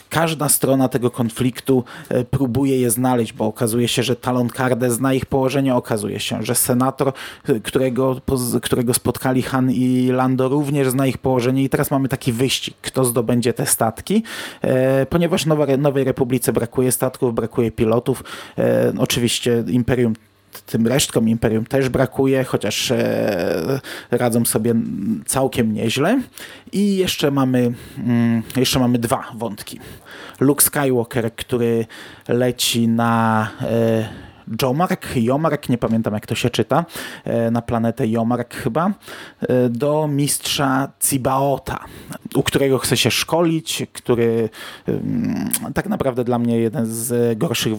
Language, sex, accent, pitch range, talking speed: Polish, male, native, 115-135 Hz, 120 wpm